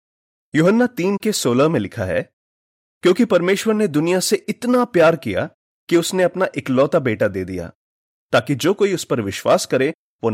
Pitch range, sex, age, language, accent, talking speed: 120-190 Hz, male, 30-49, Hindi, native, 175 wpm